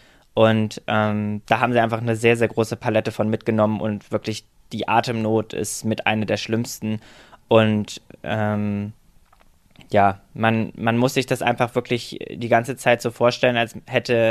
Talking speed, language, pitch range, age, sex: 165 wpm, German, 115-125 Hz, 20-39, male